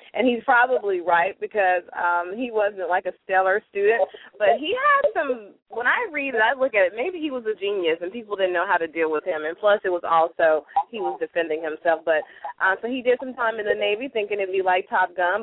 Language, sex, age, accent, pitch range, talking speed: English, female, 30-49, American, 180-235 Hz, 255 wpm